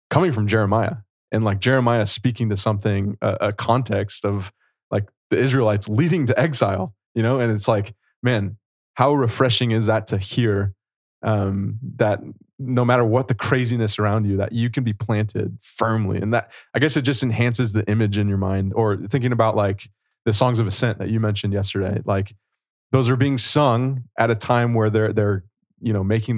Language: English